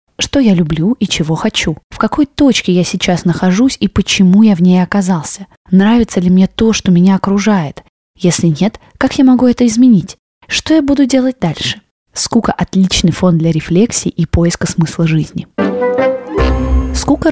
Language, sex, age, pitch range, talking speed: Russian, female, 20-39, 175-230 Hz, 165 wpm